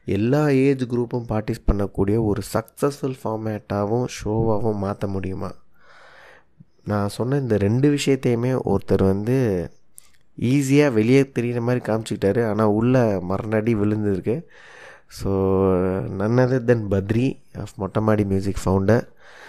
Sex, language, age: male, Tamil, 20-39